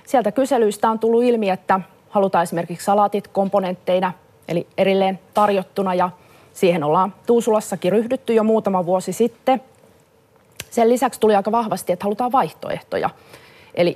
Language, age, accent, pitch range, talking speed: Finnish, 30-49, native, 180-230 Hz, 135 wpm